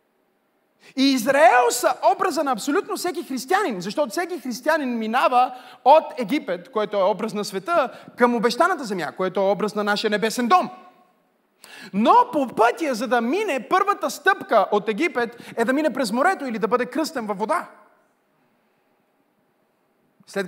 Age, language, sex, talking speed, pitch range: 30-49, Bulgarian, male, 150 wpm, 200-295 Hz